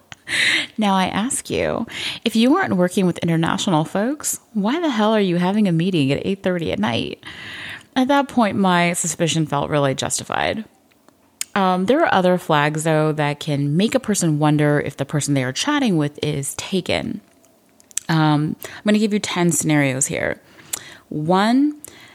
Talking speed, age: 170 wpm, 30-49